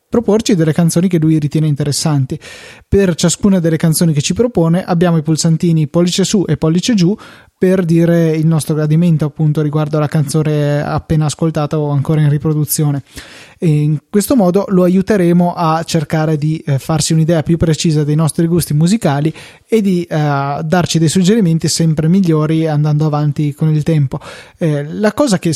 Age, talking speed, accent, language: 20-39, 170 wpm, native, Italian